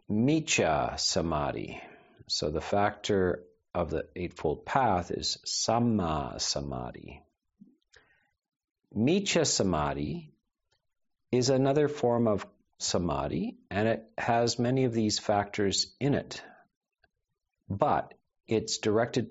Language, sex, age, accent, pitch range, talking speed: English, male, 50-69, American, 90-120 Hz, 95 wpm